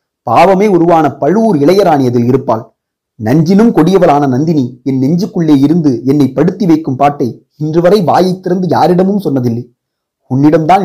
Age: 30-49